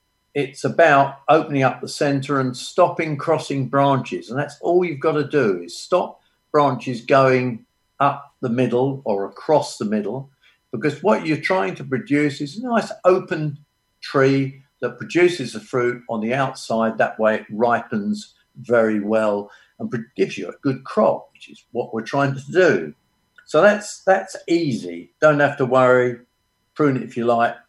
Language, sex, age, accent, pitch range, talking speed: English, male, 50-69, British, 120-155 Hz, 170 wpm